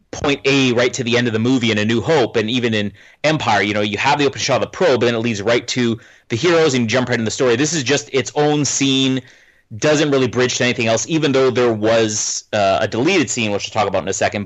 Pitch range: 110-135 Hz